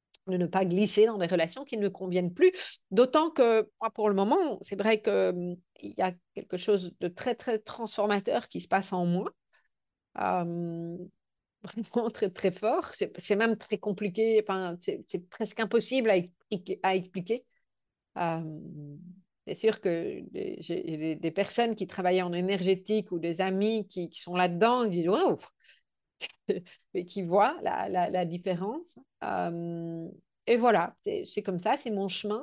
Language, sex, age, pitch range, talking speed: French, female, 50-69, 180-225 Hz, 175 wpm